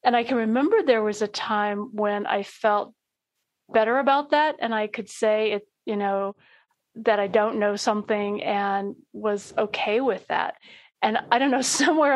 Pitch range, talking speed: 205-250 Hz, 180 wpm